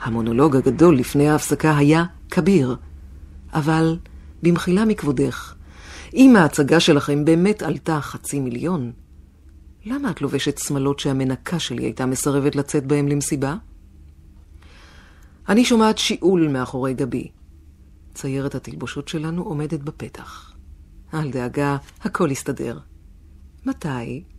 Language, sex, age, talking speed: Hebrew, female, 50-69, 105 wpm